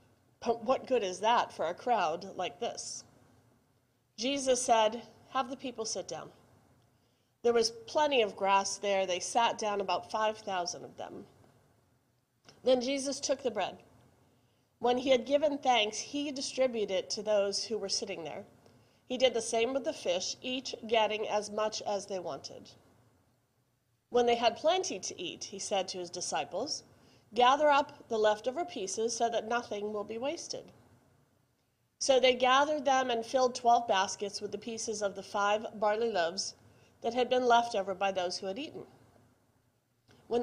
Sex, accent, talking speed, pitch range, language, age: female, American, 165 wpm, 170-245 Hz, English, 40-59